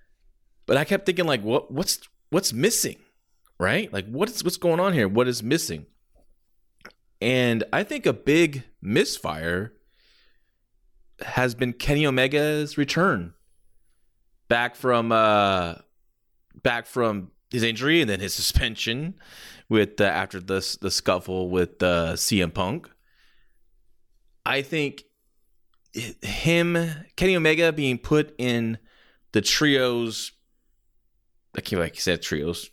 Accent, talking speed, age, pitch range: American, 125 wpm, 20-39, 100-135 Hz